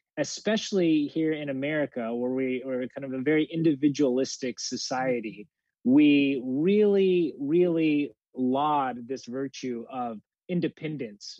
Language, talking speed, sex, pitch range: English, 110 wpm, male, 130-165 Hz